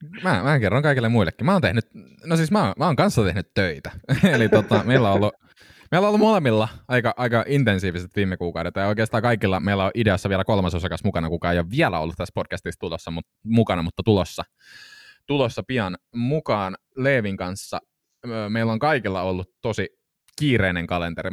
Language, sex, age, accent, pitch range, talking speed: Finnish, male, 20-39, native, 90-115 Hz, 185 wpm